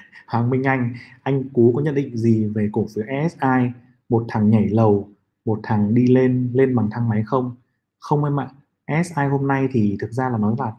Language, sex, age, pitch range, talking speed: Vietnamese, male, 20-39, 115-145 Hz, 215 wpm